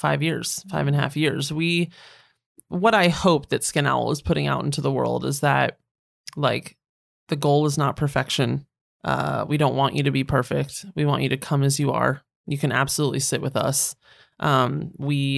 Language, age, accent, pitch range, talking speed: English, 30-49, American, 140-170 Hz, 205 wpm